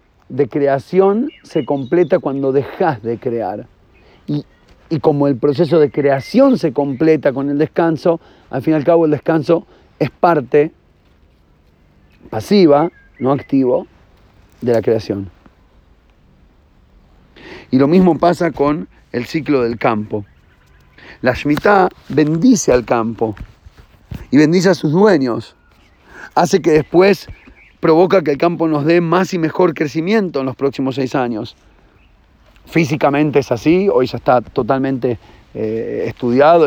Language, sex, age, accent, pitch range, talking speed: Spanish, male, 40-59, Argentinian, 120-160 Hz, 135 wpm